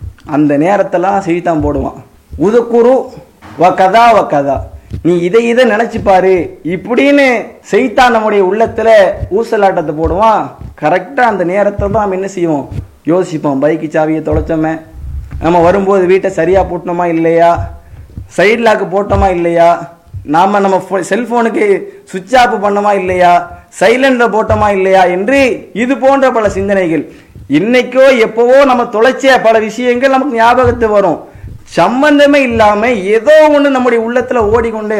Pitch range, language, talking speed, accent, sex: 180-255 Hz, English, 115 wpm, Indian, male